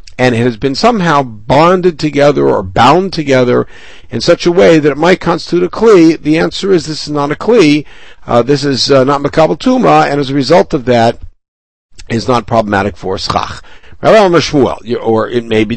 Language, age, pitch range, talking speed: English, 60-79, 105-155 Hz, 185 wpm